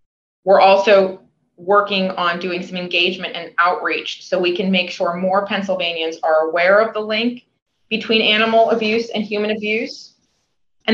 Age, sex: 20-39, female